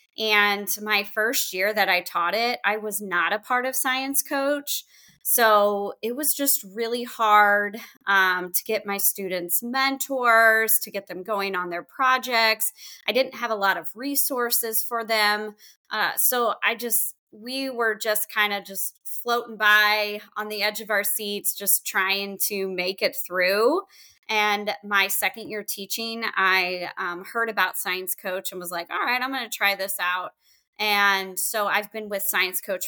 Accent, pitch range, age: American, 195-225 Hz, 20-39